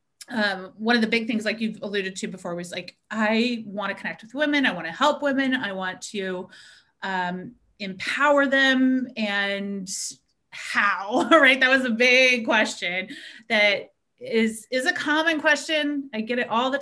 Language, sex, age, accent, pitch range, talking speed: English, female, 30-49, American, 205-260 Hz, 175 wpm